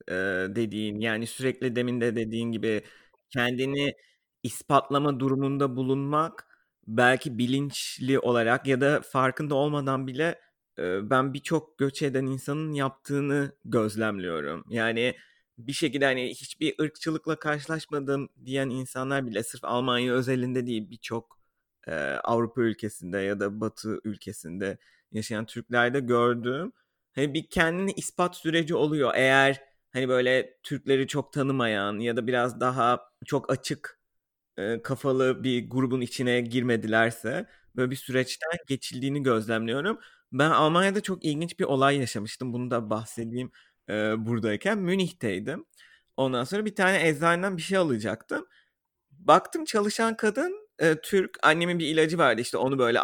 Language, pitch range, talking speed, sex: Turkish, 120-145 Hz, 120 wpm, male